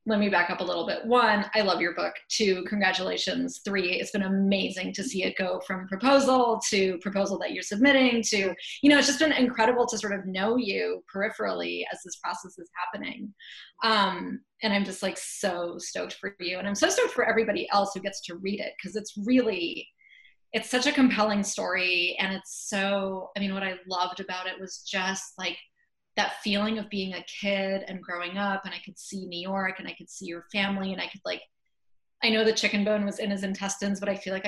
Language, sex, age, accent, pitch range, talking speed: English, female, 20-39, American, 190-230 Hz, 220 wpm